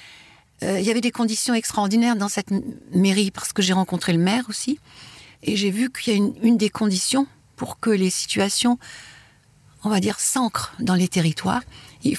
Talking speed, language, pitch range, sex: 185 wpm, French, 175-215 Hz, female